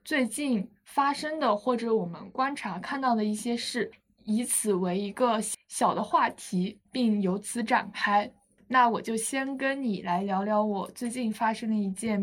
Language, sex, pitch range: Chinese, female, 210-260 Hz